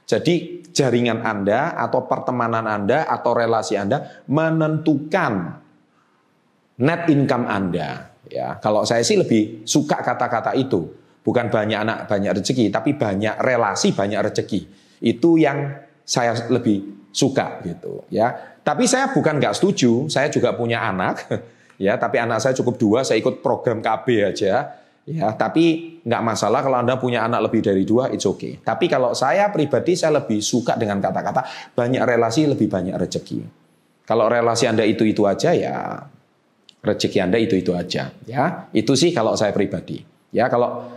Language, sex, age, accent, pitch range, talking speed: Indonesian, male, 30-49, native, 105-140 Hz, 150 wpm